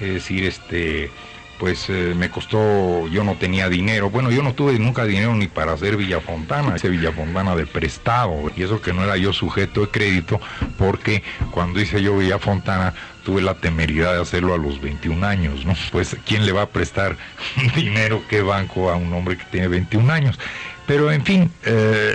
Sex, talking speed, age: male, 185 wpm, 50-69